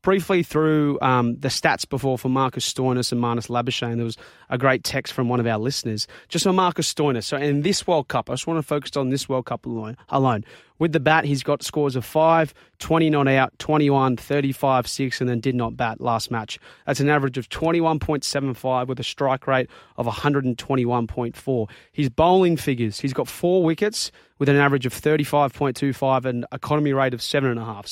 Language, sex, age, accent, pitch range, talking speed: English, male, 20-39, Australian, 125-150 Hz, 195 wpm